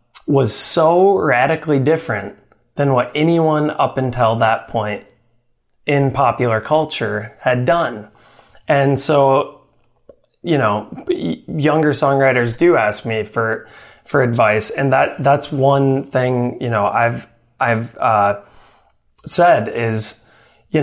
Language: English